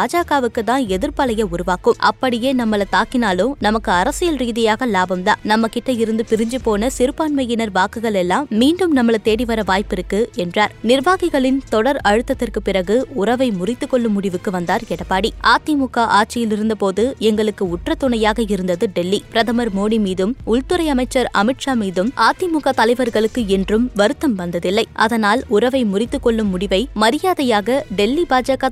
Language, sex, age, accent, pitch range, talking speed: Tamil, female, 20-39, native, 210-260 Hz, 135 wpm